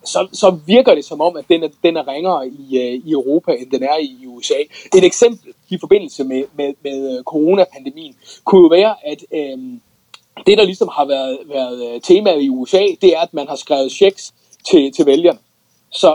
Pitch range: 150-220 Hz